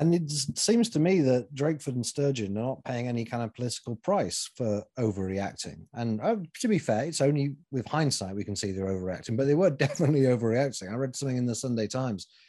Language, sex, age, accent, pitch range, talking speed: English, male, 30-49, British, 115-145 Hz, 210 wpm